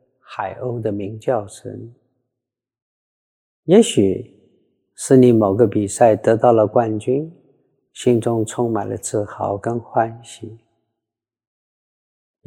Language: Chinese